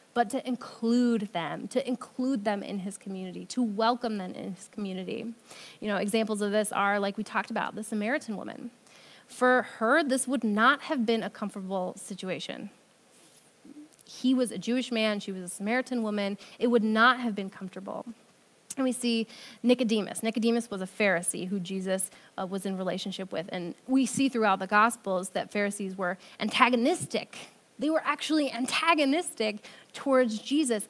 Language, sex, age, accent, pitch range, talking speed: English, female, 20-39, American, 205-255 Hz, 165 wpm